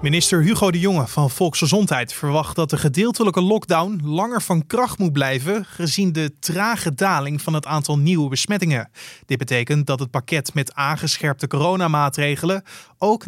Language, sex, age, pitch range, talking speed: Dutch, male, 30-49, 145-185 Hz, 155 wpm